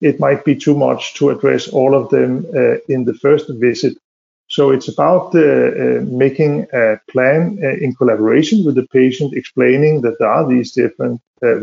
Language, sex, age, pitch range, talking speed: English, male, 50-69, 120-145 Hz, 185 wpm